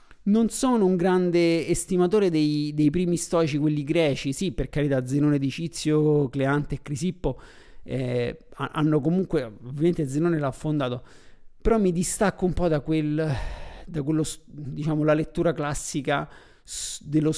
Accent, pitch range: native, 140-165 Hz